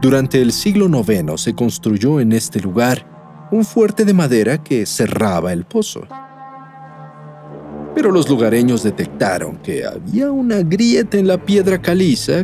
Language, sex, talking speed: Spanish, male, 140 wpm